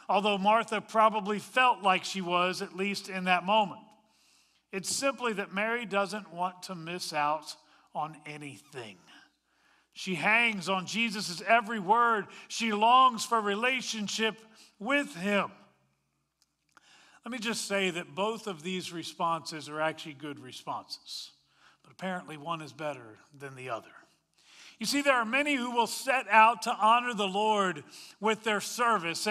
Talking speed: 145 wpm